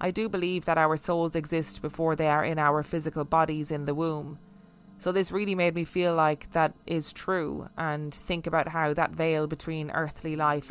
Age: 20-39